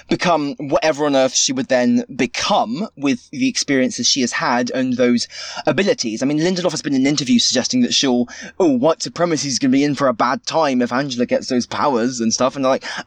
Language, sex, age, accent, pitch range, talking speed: English, male, 20-39, British, 135-215 Hz, 230 wpm